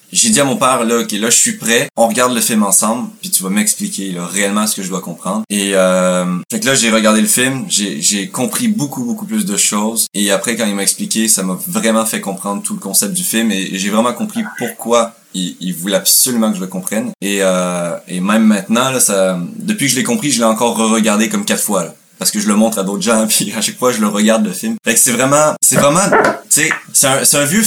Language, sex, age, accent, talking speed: French, male, 20-39, French, 270 wpm